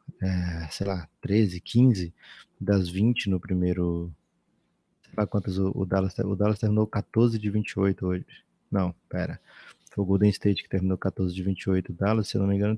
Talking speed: 190 wpm